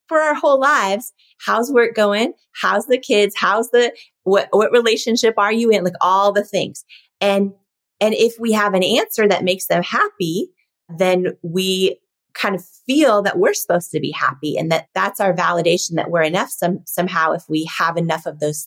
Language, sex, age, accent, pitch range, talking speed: English, female, 30-49, American, 170-230 Hz, 195 wpm